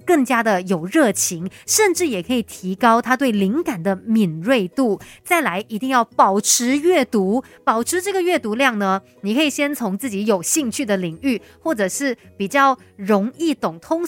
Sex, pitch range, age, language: female, 195-270 Hz, 30-49, Chinese